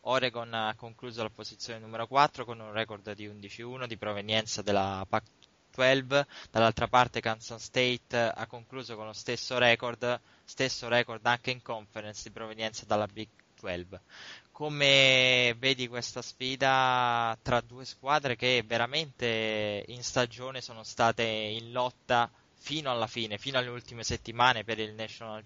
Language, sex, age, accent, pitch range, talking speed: Italian, male, 20-39, native, 110-125 Hz, 145 wpm